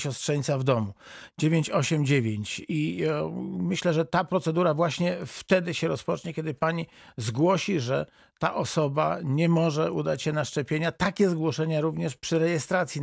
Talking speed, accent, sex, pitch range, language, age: 140 wpm, native, male, 130-160 Hz, Polish, 50-69